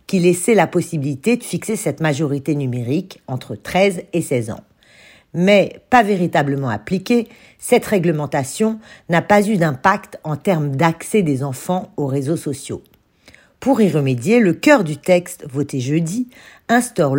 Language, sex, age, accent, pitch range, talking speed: French, female, 50-69, French, 145-195 Hz, 145 wpm